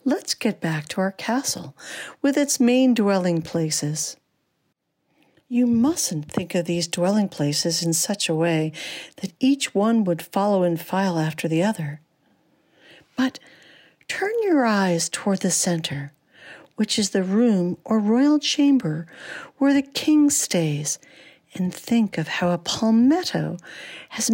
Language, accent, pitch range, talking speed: English, American, 180-265 Hz, 140 wpm